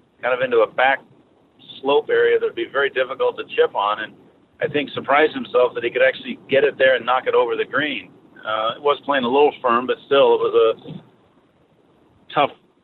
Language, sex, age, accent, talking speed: English, male, 50-69, American, 215 wpm